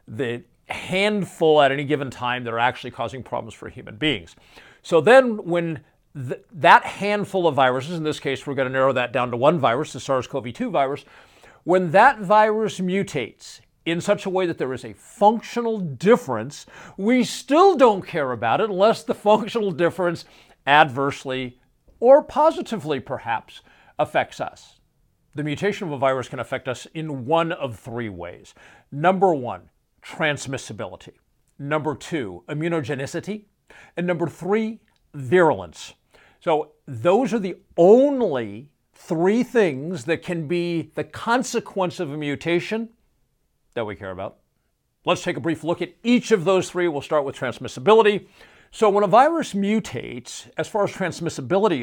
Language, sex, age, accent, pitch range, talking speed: English, male, 50-69, American, 135-195 Hz, 150 wpm